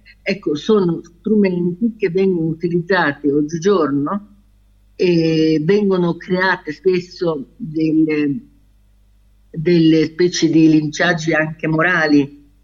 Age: 50-69